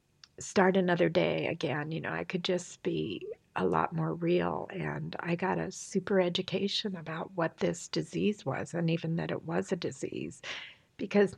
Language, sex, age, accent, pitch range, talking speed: English, female, 60-79, American, 180-215 Hz, 175 wpm